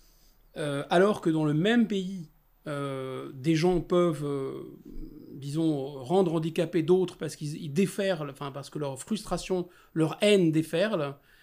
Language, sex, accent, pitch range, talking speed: French, male, French, 145-180 Hz, 135 wpm